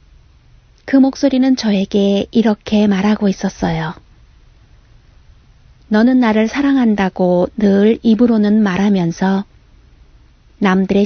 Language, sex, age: Korean, female, 30-49